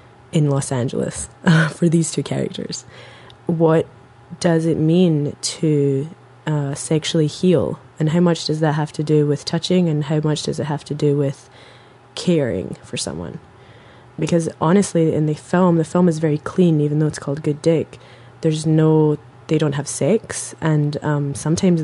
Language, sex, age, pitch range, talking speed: English, female, 20-39, 140-160 Hz, 175 wpm